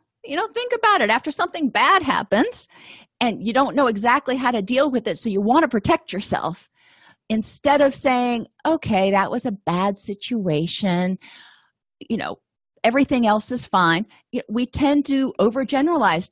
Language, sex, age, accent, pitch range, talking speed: English, female, 40-59, American, 190-255 Hz, 160 wpm